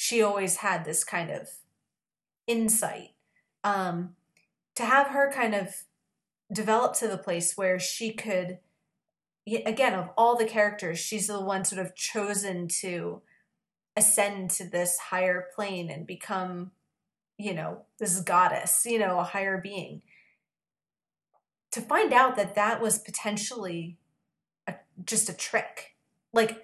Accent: American